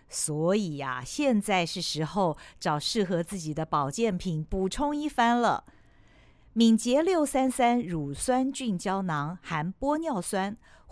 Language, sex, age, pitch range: Chinese, female, 50-69, 170-235 Hz